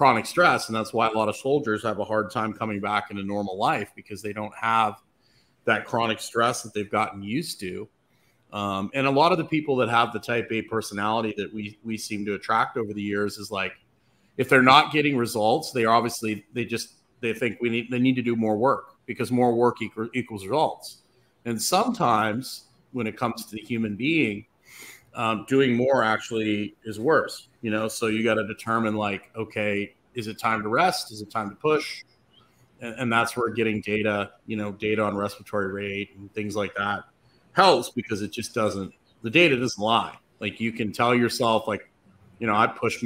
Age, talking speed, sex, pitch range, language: 30-49, 210 wpm, male, 105-115 Hz, English